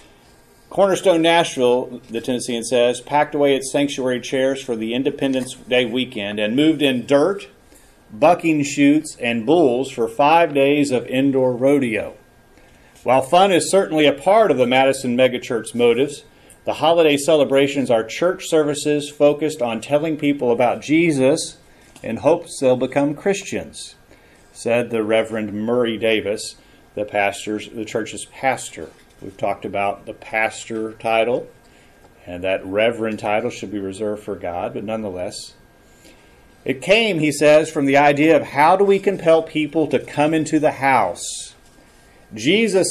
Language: English